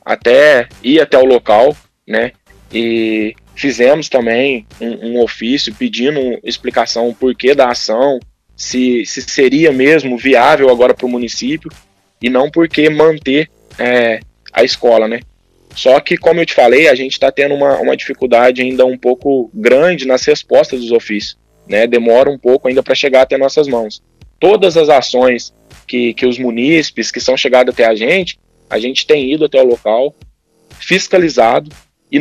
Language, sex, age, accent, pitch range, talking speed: Portuguese, male, 20-39, Brazilian, 120-150 Hz, 165 wpm